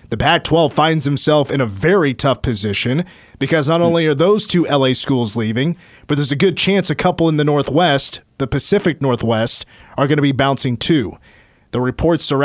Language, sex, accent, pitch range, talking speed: English, male, American, 130-155 Hz, 195 wpm